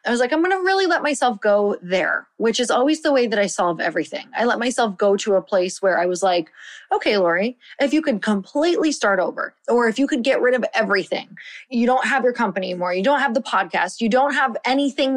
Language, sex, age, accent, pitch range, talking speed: English, female, 20-39, American, 190-245 Hz, 240 wpm